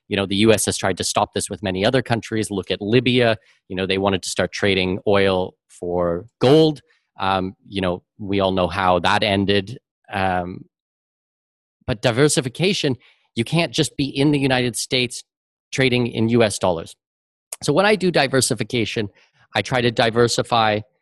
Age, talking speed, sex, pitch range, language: 30-49, 170 wpm, male, 100-130 Hz, English